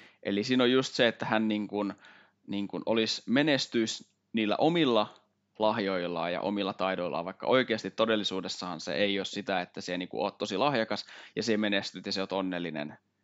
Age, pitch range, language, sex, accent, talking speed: 20-39, 95-105 Hz, Finnish, male, native, 180 wpm